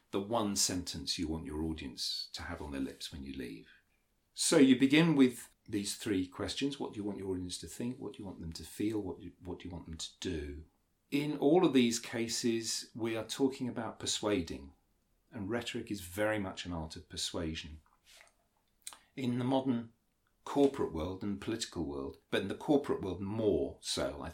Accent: British